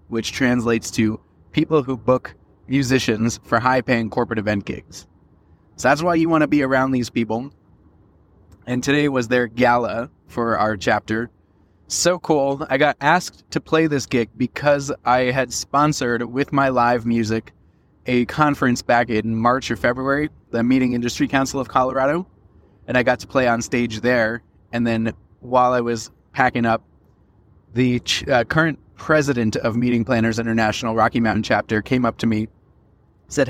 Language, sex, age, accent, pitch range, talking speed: English, male, 20-39, American, 110-135 Hz, 165 wpm